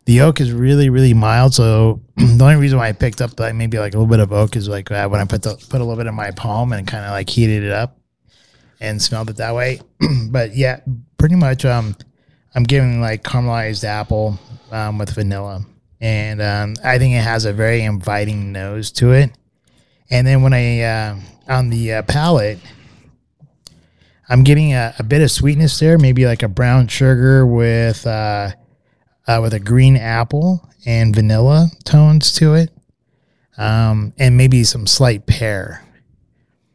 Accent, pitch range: American, 105-130 Hz